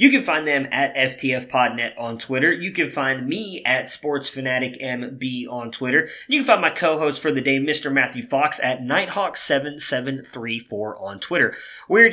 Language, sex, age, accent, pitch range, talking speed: English, male, 20-39, American, 130-165 Hz, 170 wpm